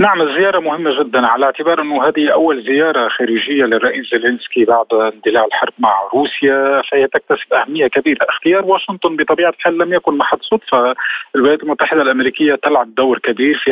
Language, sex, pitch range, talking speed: Arabic, male, 125-160 Hz, 160 wpm